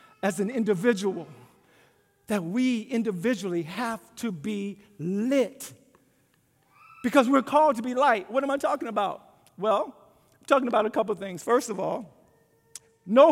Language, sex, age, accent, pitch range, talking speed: English, male, 50-69, American, 195-320 Hz, 150 wpm